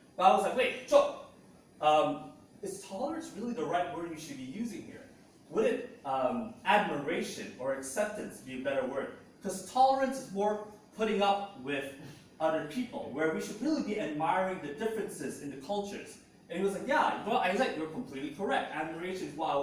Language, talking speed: English, 200 wpm